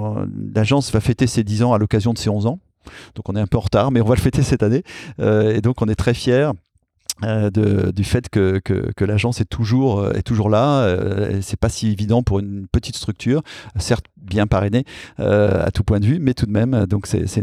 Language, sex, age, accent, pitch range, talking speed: French, male, 30-49, French, 100-120 Hz, 250 wpm